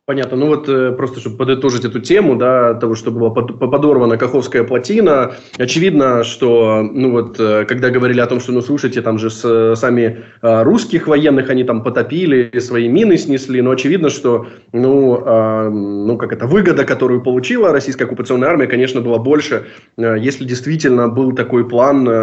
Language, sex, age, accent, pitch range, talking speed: Ukrainian, male, 20-39, native, 115-135 Hz, 155 wpm